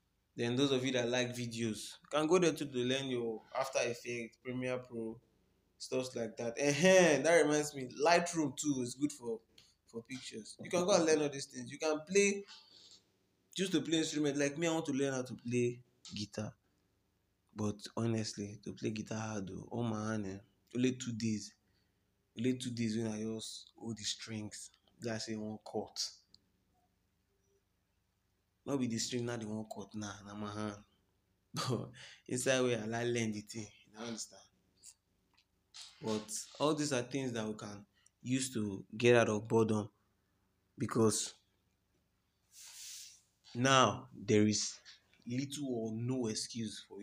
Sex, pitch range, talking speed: male, 100-130 Hz, 170 wpm